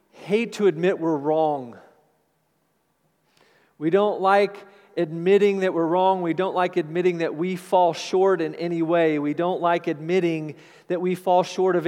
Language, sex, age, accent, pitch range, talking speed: English, male, 40-59, American, 165-195 Hz, 160 wpm